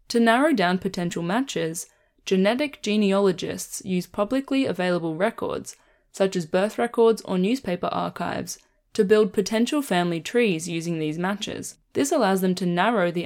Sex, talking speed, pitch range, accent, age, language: female, 145 wpm, 175-225 Hz, Australian, 10-29, English